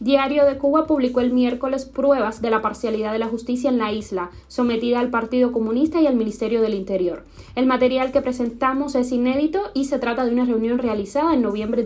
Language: Spanish